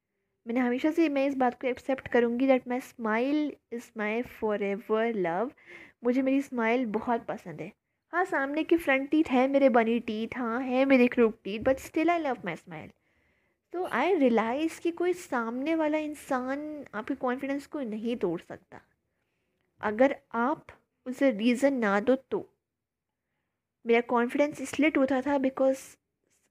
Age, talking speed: 20-39, 160 wpm